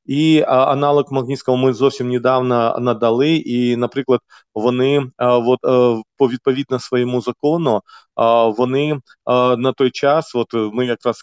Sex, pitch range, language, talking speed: male, 120-135 Hz, Ukrainian, 130 wpm